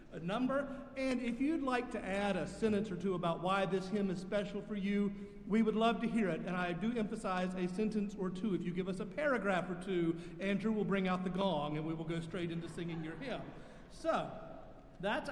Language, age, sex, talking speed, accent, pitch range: English, 50-69, male, 230 wpm, American, 165-200 Hz